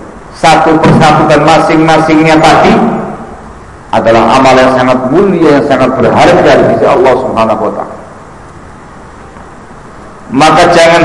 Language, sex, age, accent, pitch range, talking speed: Indonesian, male, 50-69, Indian, 155-210 Hz, 105 wpm